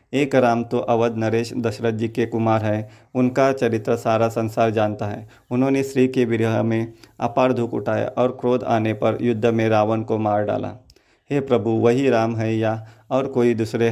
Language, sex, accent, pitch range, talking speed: Hindi, male, native, 110-125 Hz, 185 wpm